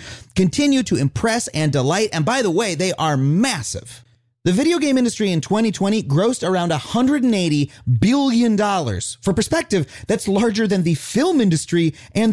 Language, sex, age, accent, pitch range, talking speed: English, male, 30-49, American, 140-225 Hz, 150 wpm